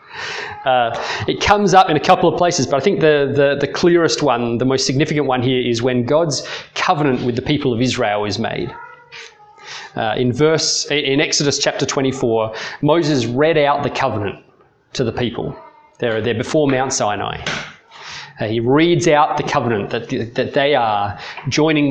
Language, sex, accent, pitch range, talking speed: English, male, Australian, 120-155 Hz, 170 wpm